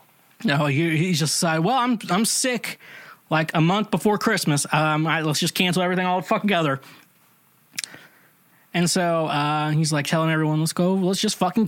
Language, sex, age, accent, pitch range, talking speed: English, male, 20-39, American, 145-185 Hz, 185 wpm